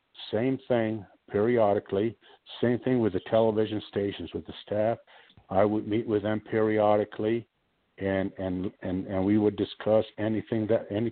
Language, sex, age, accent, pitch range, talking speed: English, male, 60-79, American, 100-115 Hz, 150 wpm